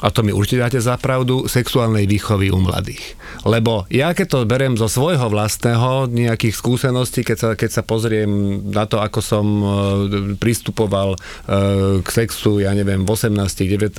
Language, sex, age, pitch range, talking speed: English, male, 40-59, 100-120 Hz, 160 wpm